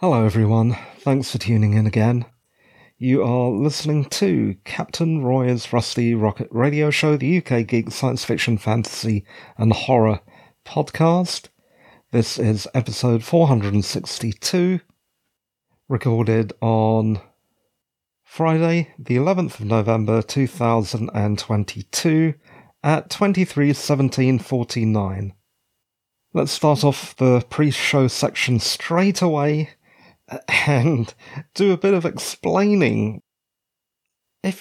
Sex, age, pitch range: male, 40-59, 115-165 Hz